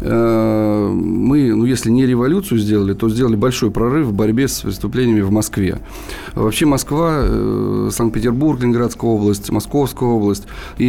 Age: 20-39